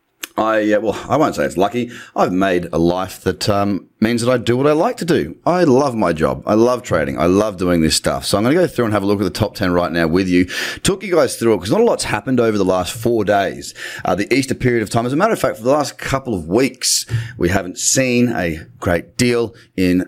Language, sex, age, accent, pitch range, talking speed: English, male, 30-49, Australian, 90-120 Hz, 280 wpm